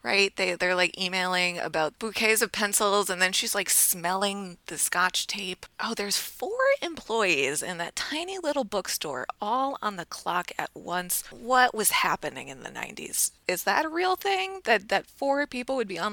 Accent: American